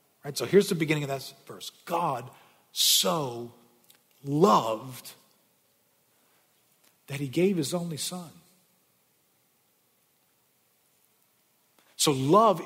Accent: American